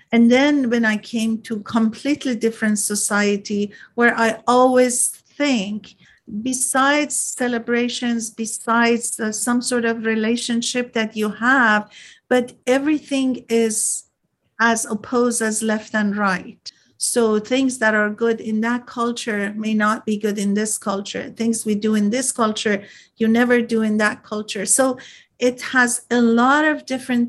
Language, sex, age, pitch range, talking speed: English, female, 50-69, 210-240 Hz, 145 wpm